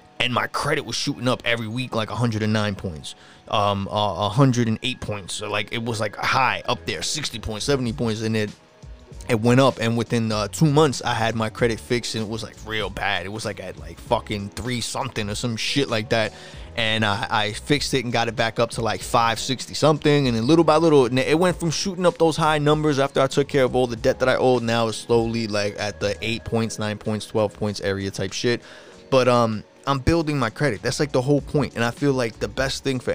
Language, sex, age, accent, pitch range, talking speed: English, male, 20-39, American, 105-130 Hz, 240 wpm